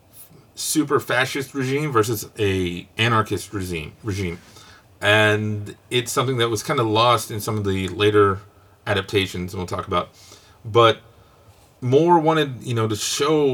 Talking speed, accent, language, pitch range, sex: 145 wpm, American, English, 100-125 Hz, male